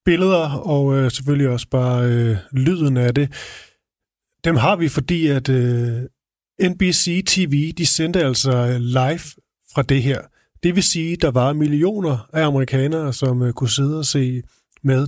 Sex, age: male, 30-49